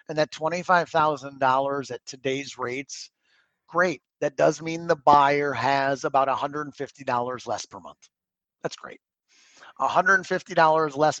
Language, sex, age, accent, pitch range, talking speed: English, male, 30-49, American, 125-160 Hz, 120 wpm